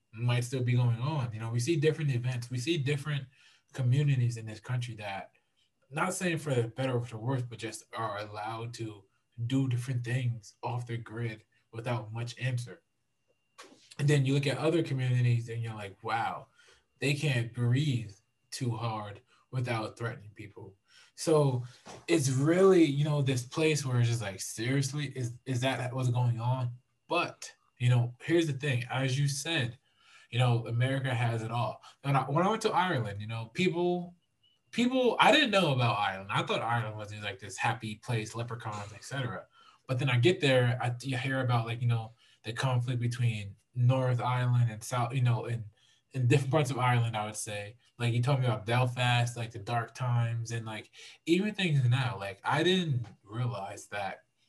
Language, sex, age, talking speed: English, male, 20-39, 190 wpm